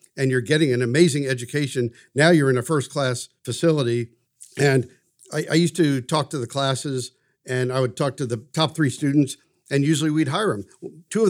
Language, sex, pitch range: English, male, 125-155 Hz